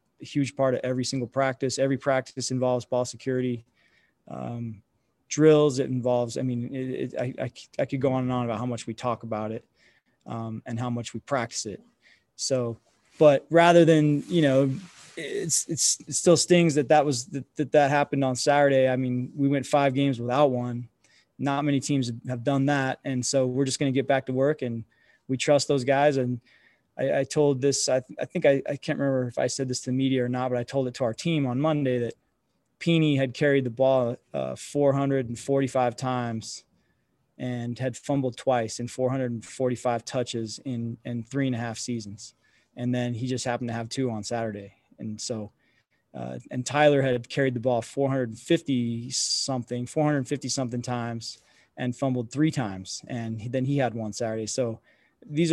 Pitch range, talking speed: 120-140 Hz, 190 wpm